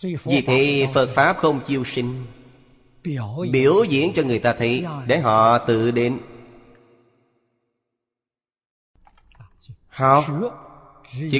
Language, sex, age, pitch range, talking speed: Vietnamese, male, 20-39, 110-140 Hz, 100 wpm